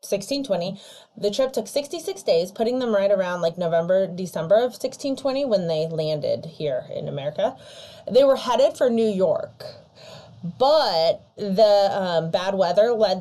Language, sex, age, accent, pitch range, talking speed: English, female, 20-39, American, 190-255 Hz, 150 wpm